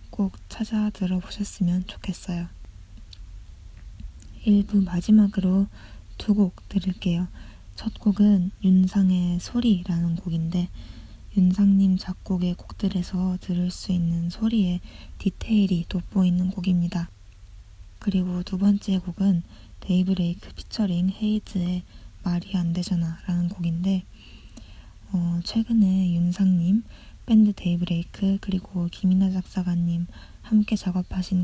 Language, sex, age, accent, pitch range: Korean, female, 20-39, native, 175-195 Hz